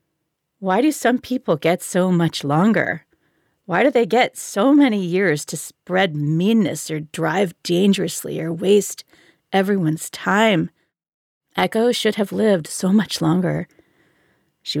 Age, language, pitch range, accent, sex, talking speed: 40-59, English, 160-200 Hz, American, female, 135 wpm